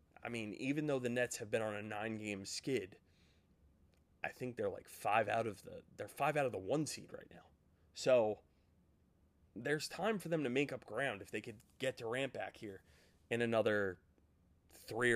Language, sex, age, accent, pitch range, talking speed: English, male, 20-39, American, 90-125 Hz, 190 wpm